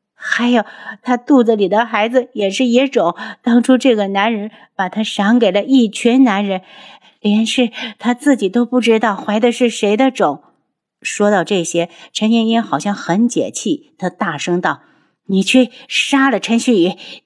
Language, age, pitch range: Chinese, 50-69, 175-240 Hz